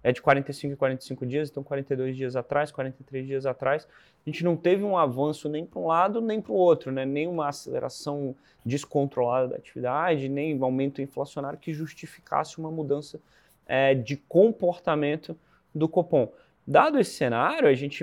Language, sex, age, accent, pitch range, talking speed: Portuguese, male, 20-39, Brazilian, 130-155 Hz, 170 wpm